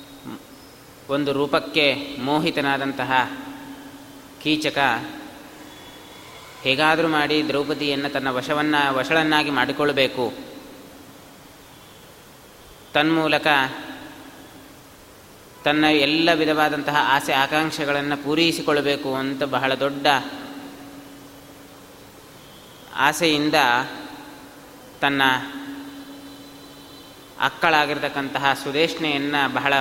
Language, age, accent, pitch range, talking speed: Kannada, 20-39, native, 140-160 Hz, 50 wpm